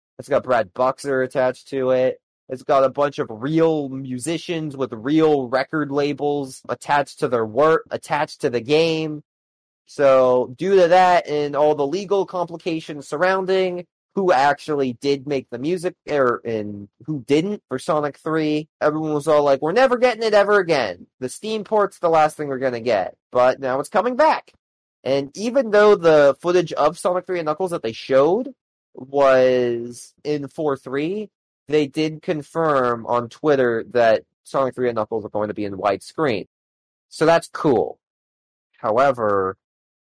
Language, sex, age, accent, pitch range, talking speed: English, male, 30-49, American, 125-170 Hz, 165 wpm